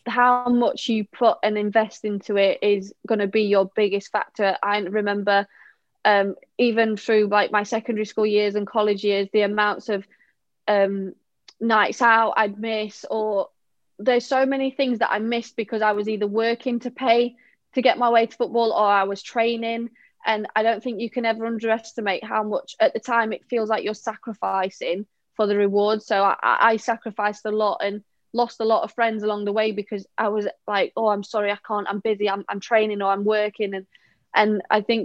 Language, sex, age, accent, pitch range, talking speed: English, female, 20-39, British, 205-230 Hz, 200 wpm